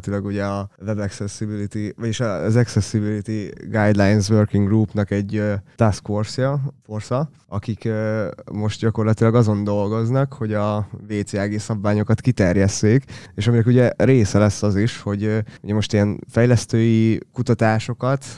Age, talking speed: 20-39, 120 wpm